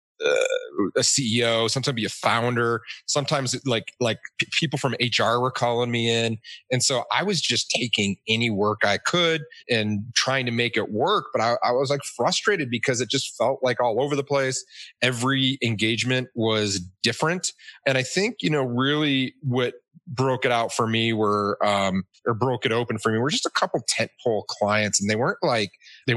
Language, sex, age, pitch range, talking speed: English, male, 30-49, 105-135 Hz, 195 wpm